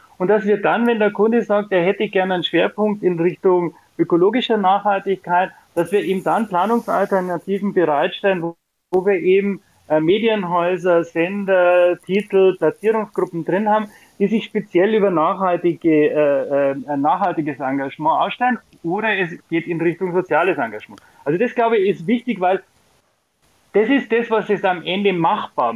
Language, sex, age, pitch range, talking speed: German, male, 30-49, 170-210 Hz, 145 wpm